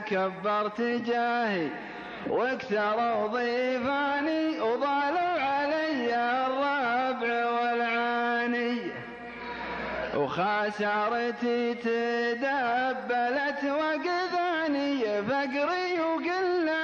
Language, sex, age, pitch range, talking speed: Arabic, male, 30-49, 235-285 Hz, 45 wpm